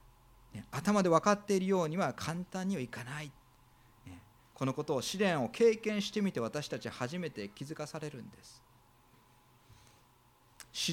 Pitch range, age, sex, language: 115-175 Hz, 40-59, male, Japanese